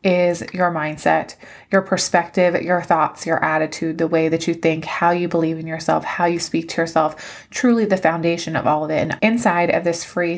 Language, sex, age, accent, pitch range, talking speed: English, female, 20-39, American, 165-185 Hz, 210 wpm